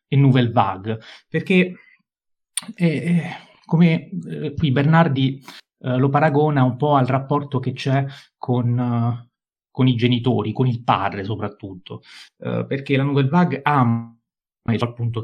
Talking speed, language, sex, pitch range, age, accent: 140 wpm, Italian, male, 120-150 Hz, 30-49, native